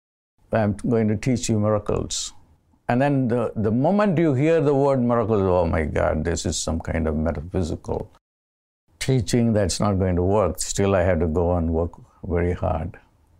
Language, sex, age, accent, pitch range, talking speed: English, male, 60-79, Indian, 85-125 Hz, 180 wpm